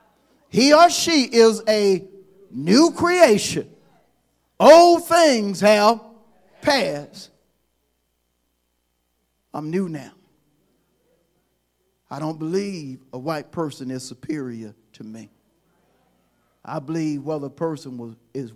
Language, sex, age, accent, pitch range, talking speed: English, male, 40-59, American, 125-195 Hz, 95 wpm